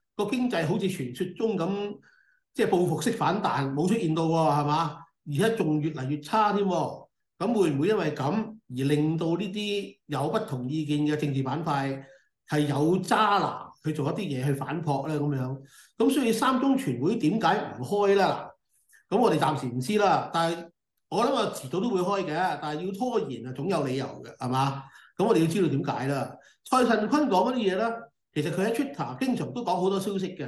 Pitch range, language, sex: 145-205 Hz, Chinese, male